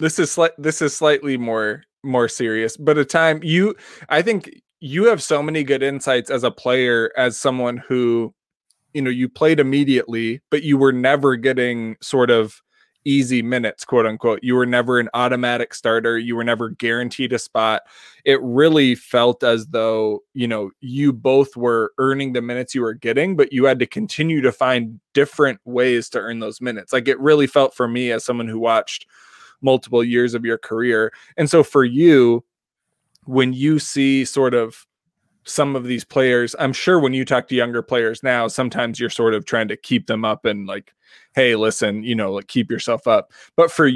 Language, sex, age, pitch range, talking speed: English, male, 20-39, 120-140 Hz, 195 wpm